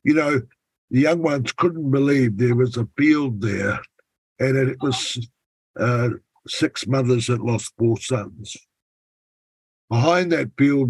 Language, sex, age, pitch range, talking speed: English, male, 60-79, 120-140 Hz, 140 wpm